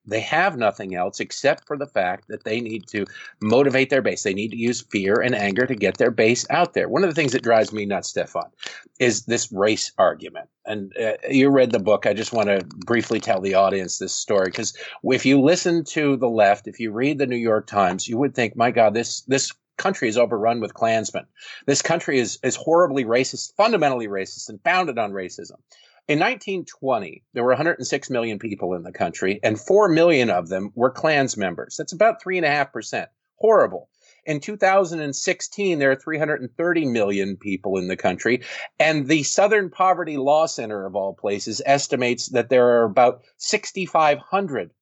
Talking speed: 190 wpm